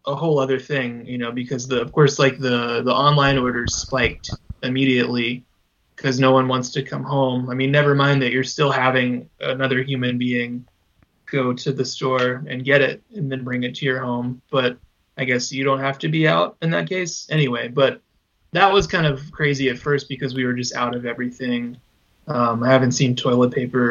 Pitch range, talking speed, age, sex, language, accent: 125-150 Hz, 210 wpm, 20-39, male, English, American